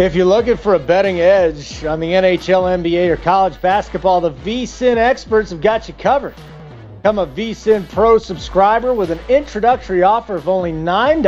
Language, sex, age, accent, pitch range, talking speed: English, male, 40-59, American, 160-210 Hz, 170 wpm